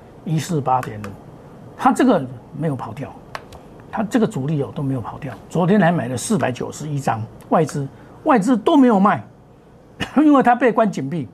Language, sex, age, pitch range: Chinese, male, 50-69, 135-215 Hz